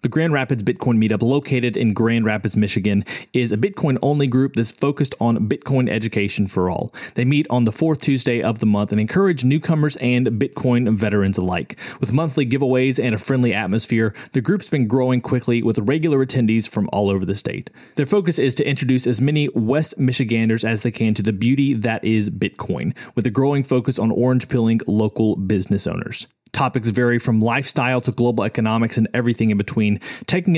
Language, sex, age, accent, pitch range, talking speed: English, male, 30-49, American, 110-135 Hz, 190 wpm